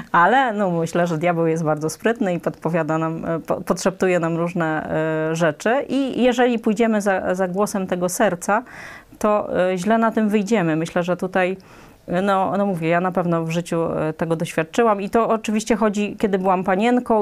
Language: Polish